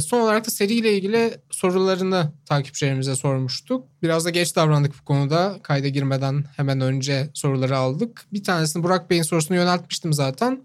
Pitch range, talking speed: 140-170 Hz, 150 wpm